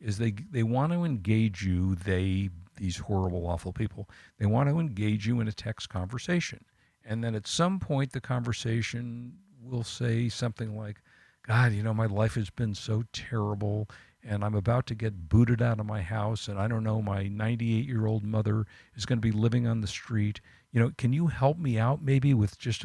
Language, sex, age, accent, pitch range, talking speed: English, male, 50-69, American, 100-125 Hz, 205 wpm